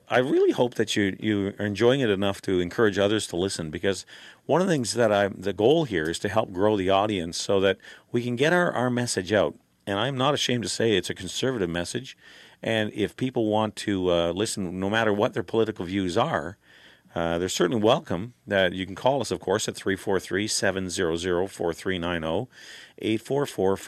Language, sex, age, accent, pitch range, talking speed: English, male, 40-59, American, 95-120 Hz, 195 wpm